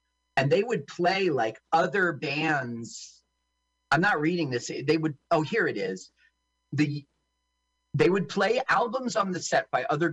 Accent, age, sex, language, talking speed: American, 40-59, male, English, 160 wpm